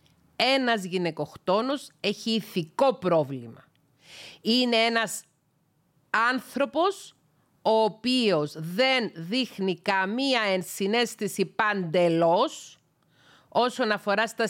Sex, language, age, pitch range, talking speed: female, Greek, 40-59, 185-260 Hz, 75 wpm